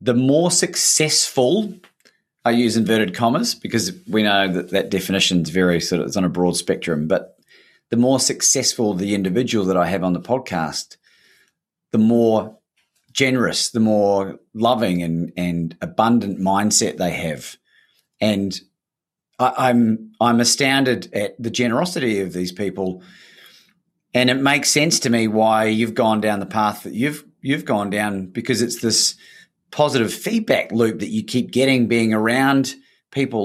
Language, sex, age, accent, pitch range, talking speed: English, male, 30-49, Australian, 95-130 Hz, 155 wpm